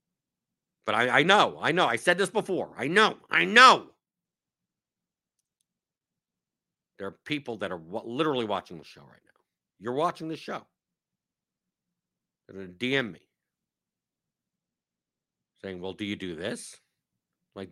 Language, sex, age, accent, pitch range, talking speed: English, male, 50-69, American, 105-165 Hz, 140 wpm